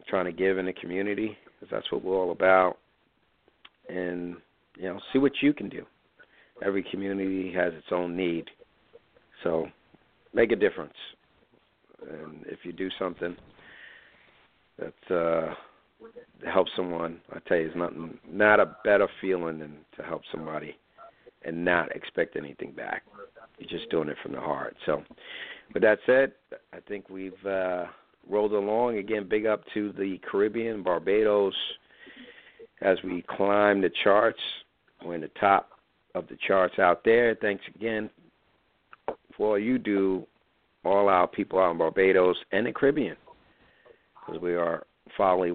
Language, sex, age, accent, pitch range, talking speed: English, male, 50-69, American, 90-105 Hz, 150 wpm